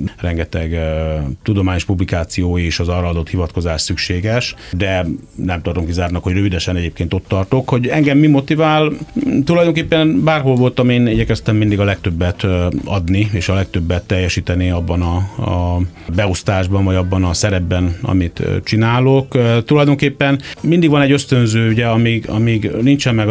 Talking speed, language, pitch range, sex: 155 wpm, Hungarian, 90-115 Hz, male